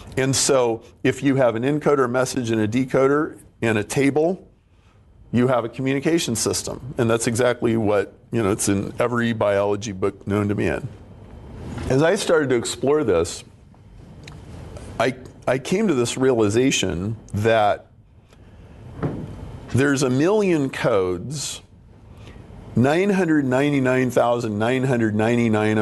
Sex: male